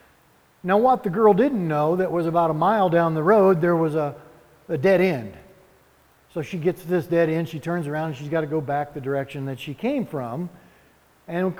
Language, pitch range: English, 160-200 Hz